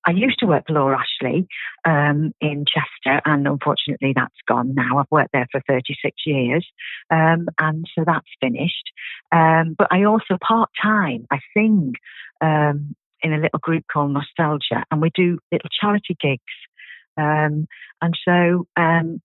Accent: British